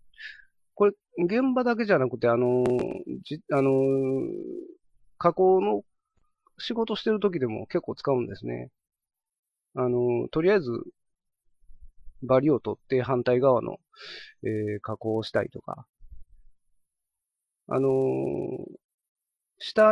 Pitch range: 120-185 Hz